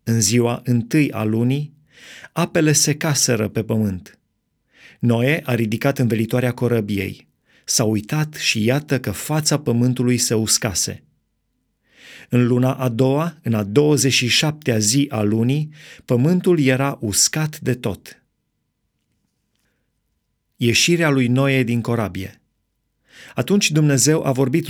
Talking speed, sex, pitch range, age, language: 120 wpm, male, 120-150 Hz, 30-49, Romanian